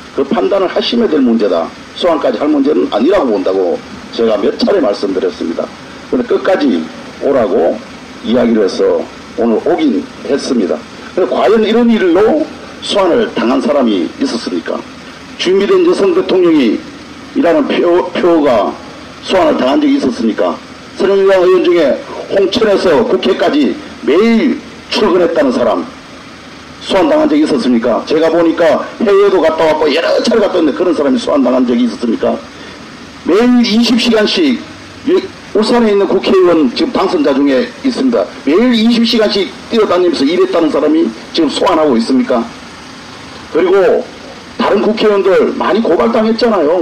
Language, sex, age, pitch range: Korean, male, 50-69, 210-300 Hz